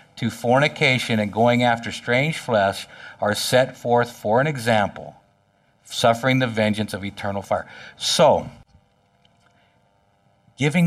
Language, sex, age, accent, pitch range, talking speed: English, male, 60-79, American, 100-145 Hz, 115 wpm